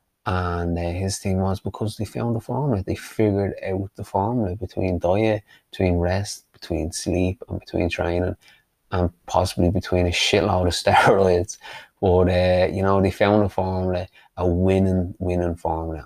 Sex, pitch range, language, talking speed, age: male, 95-110 Hz, English, 165 wpm, 20-39